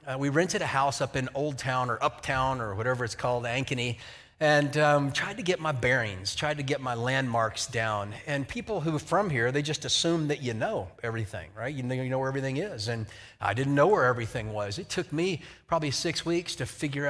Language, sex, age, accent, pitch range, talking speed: English, male, 30-49, American, 125-170 Hz, 225 wpm